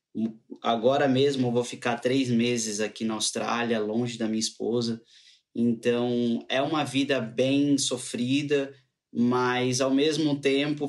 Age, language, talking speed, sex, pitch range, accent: 20-39, Portuguese, 130 wpm, male, 120-145 Hz, Brazilian